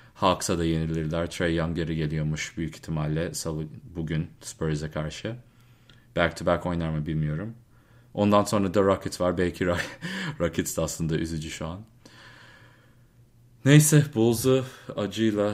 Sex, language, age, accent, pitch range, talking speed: male, English, 30-49, Turkish, 85-120 Hz, 125 wpm